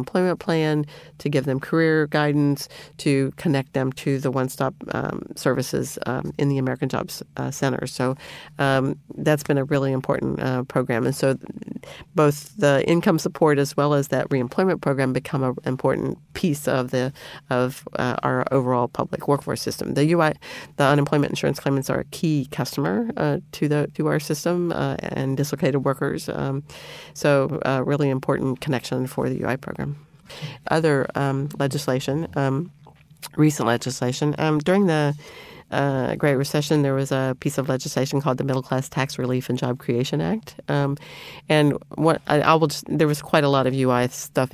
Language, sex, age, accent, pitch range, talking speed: English, female, 40-59, American, 130-150 Hz, 175 wpm